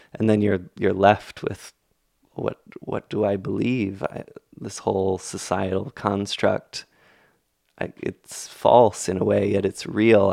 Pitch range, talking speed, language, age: 95-105 Hz, 145 wpm, English, 20-39